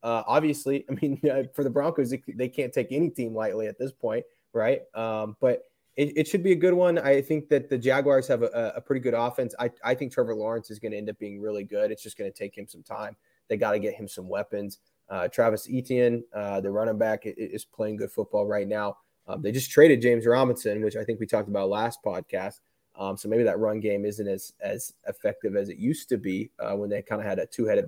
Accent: American